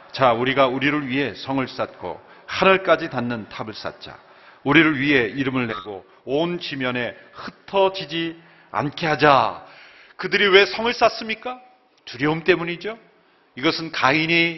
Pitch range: 160-225 Hz